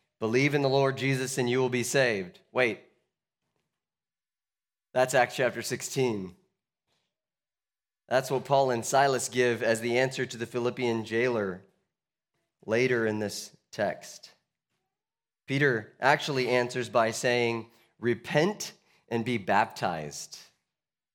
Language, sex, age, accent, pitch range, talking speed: English, male, 30-49, American, 115-135 Hz, 115 wpm